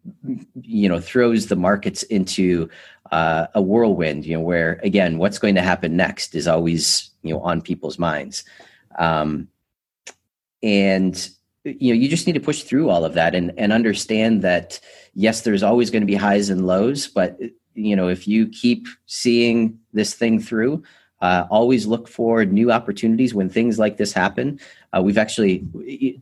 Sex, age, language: male, 30-49, English